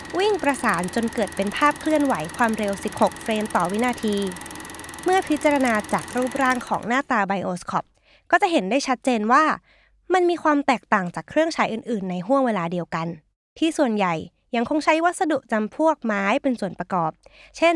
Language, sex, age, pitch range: Thai, female, 20-39, 200-305 Hz